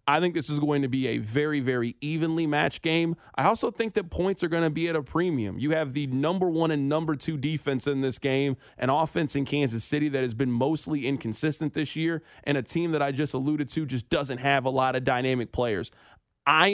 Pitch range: 130-165 Hz